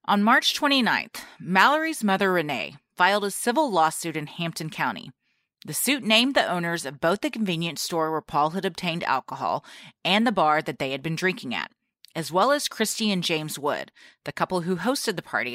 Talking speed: 195 wpm